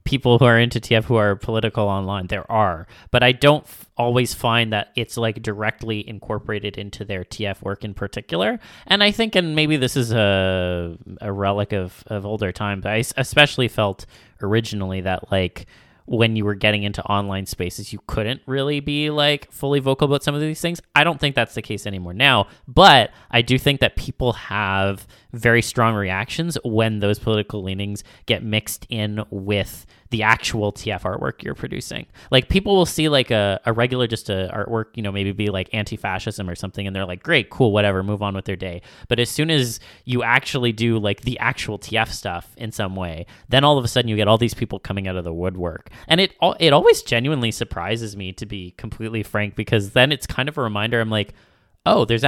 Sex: male